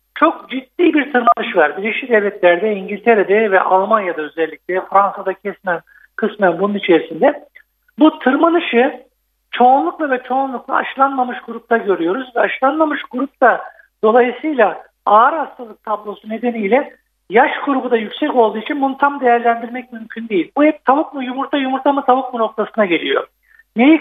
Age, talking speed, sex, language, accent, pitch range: 60-79, 135 wpm, male, Turkish, native, 215-275 Hz